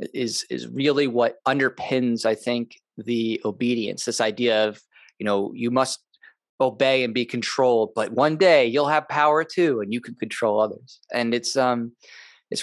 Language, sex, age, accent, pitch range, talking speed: English, male, 20-39, American, 110-130 Hz, 170 wpm